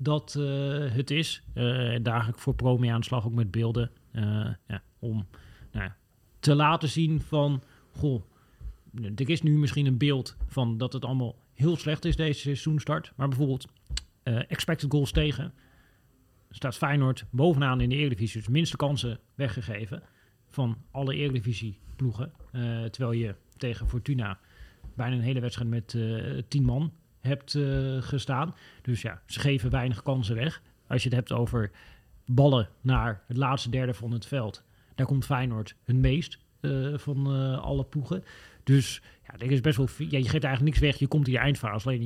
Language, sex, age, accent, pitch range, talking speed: Dutch, male, 40-59, Dutch, 115-140 Hz, 180 wpm